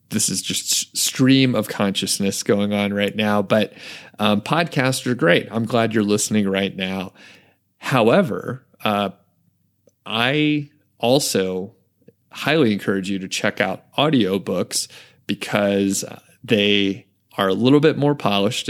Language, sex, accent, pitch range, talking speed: English, male, American, 100-120 Hz, 130 wpm